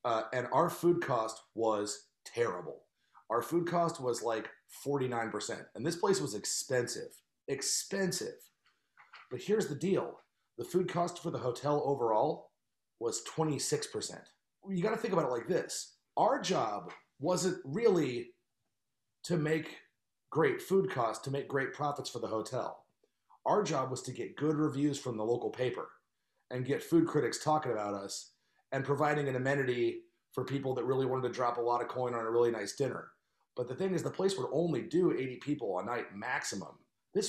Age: 30-49